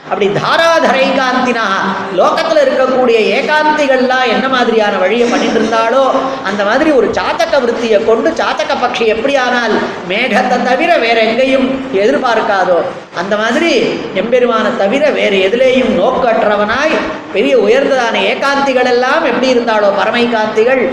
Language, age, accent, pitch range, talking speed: Tamil, 20-39, native, 215-275 Hz, 110 wpm